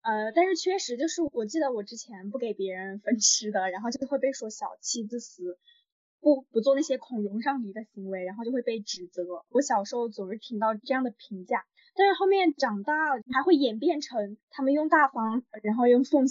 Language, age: Chinese, 10-29